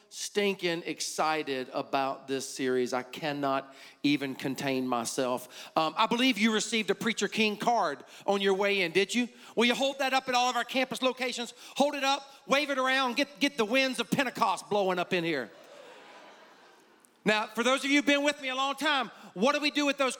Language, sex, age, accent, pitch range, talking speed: English, male, 40-59, American, 200-270 Hz, 210 wpm